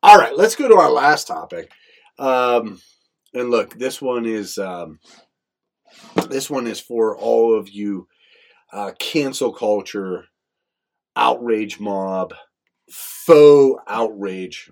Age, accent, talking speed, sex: 40-59, American, 120 wpm, male